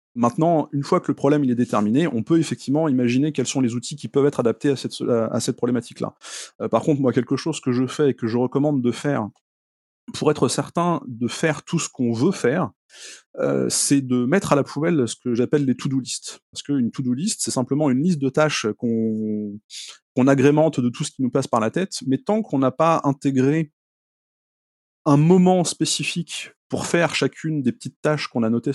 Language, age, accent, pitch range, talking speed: French, 30-49, French, 125-155 Hz, 210 wpm